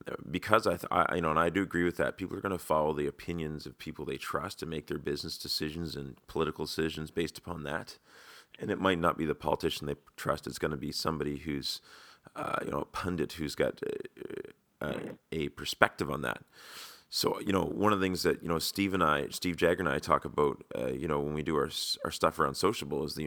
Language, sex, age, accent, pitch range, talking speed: English, male, 30-49, American, 75-90 Hz, 240 wpm